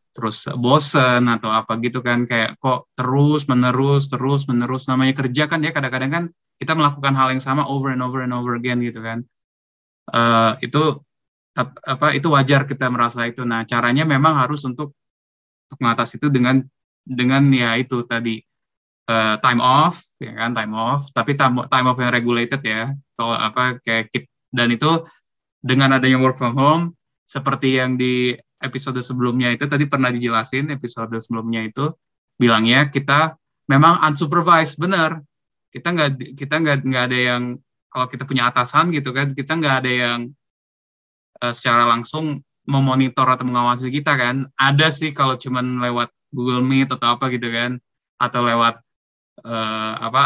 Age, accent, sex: 20-39, native, male